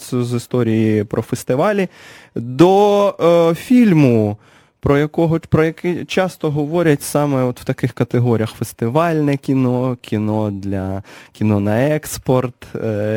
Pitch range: 105-150 Hz